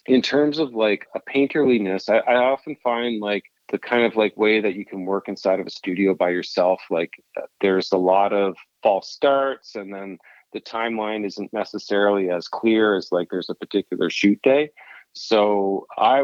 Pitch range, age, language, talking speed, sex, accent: 95-110 Hz, 30-49, English, 185 wpm, male, American